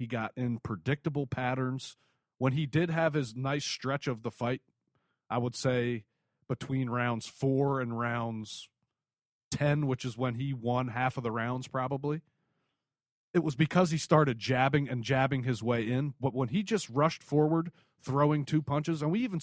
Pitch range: 130-165 Hz